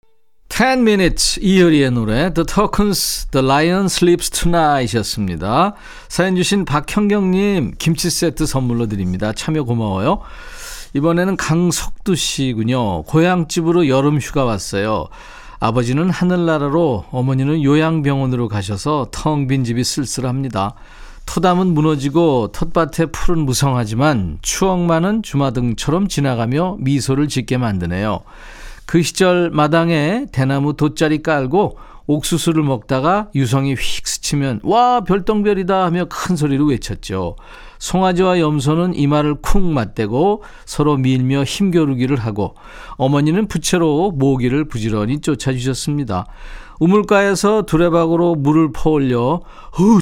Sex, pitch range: male, 130-175 Hz